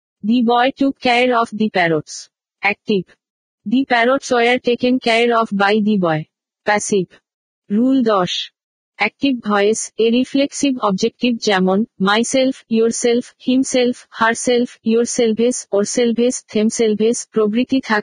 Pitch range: 210-245 Hz